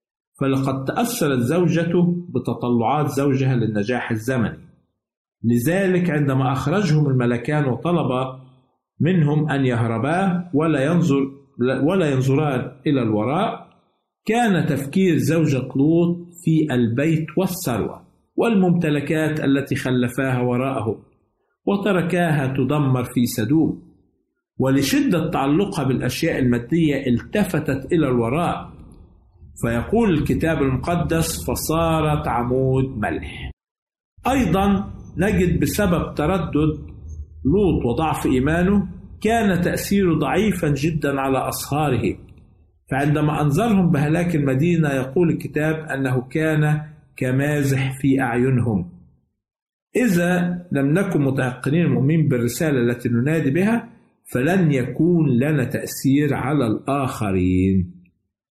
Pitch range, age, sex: 125-165 Hz, 50-69, male